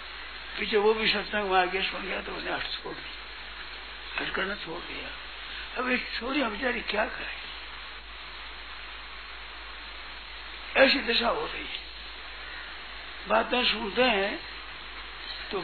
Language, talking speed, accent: Hindi, 115 wpm, native